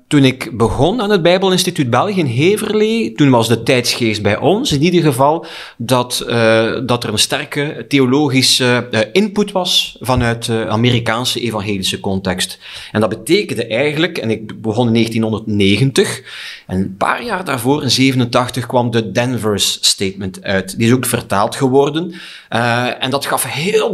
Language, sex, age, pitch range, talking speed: Dutch, male, 30-49, 110-145 Hz, 160 wpm